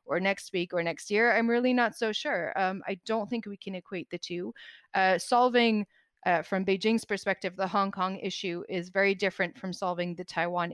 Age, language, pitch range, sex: 30-49, English, 180-225 Hz, female